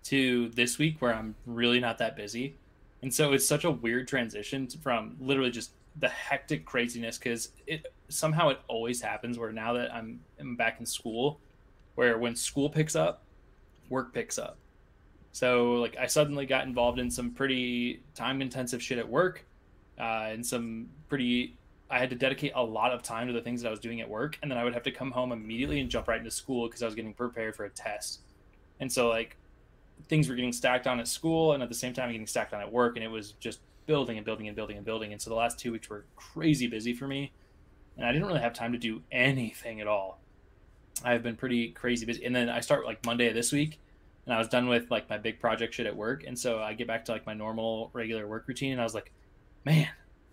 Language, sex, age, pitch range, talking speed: English, male, 20-39, 115-130 Hz, 235 wpm